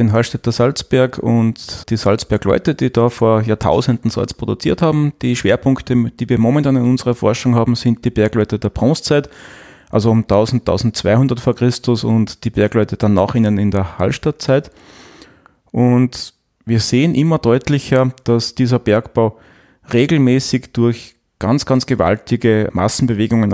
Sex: male